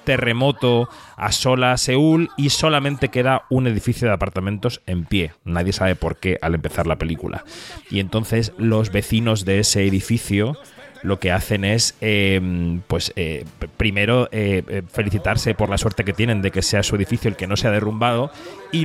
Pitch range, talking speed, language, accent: 100-125 Hz, 175 wpm, Spanish, Spanish